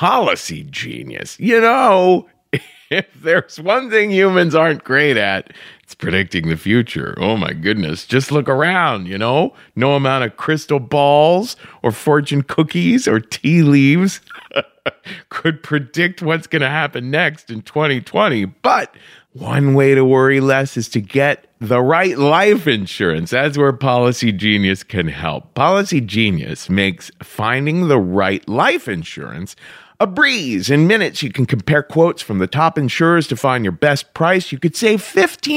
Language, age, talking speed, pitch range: English, 40-59, 155 wpm, 115-180 Hz